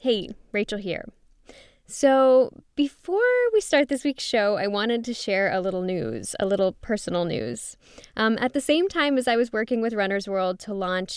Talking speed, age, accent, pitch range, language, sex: 190 wpm, 10-29, American, 185-250 Hz, English, female